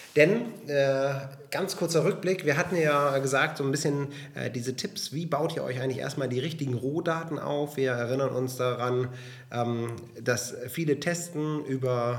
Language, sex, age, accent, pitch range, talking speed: German, male, 30-49, German, 125-150 Hz, 165 wpm